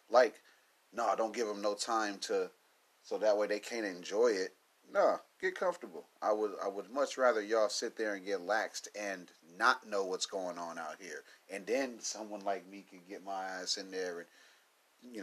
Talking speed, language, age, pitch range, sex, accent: 205 wpm, English, 30-49, 100-160 Hz, male, American